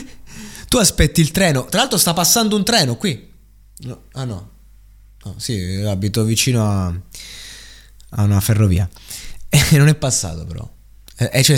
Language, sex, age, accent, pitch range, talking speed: Italian, male, 20-39, native, 100-140 Hz, 140 wpm